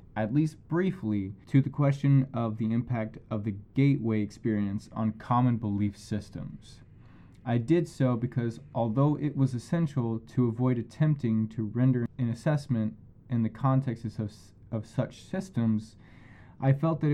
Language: English